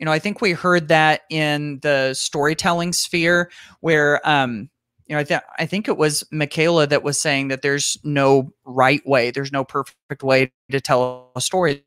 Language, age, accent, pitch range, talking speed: English, 30-49, American, 135-160 Hz, 190 wpm